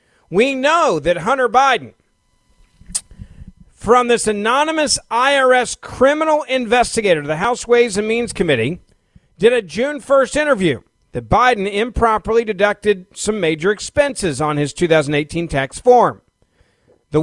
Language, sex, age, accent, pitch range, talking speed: English, male, 50-69, American, 170-245 Hz, 125 wpm